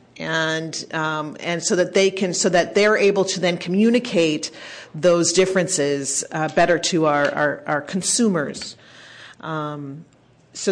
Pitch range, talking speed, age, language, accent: 170-200 Hz, 140 wpm, 40-59, English, American